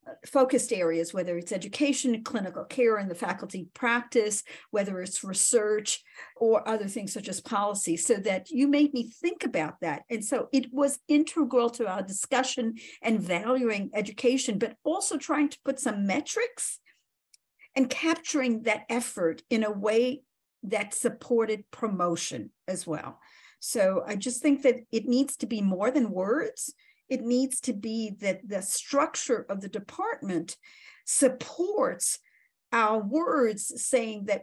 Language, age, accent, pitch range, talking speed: English, 50-69, American, 205-260 Hz, 150 wpm